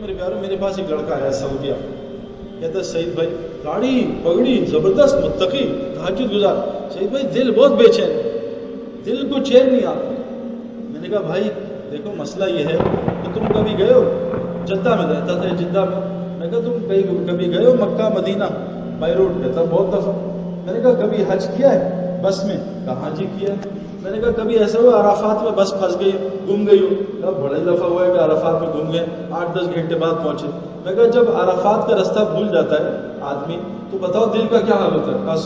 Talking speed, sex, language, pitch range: 130 wpm, male, Urdu, 175-230 Hz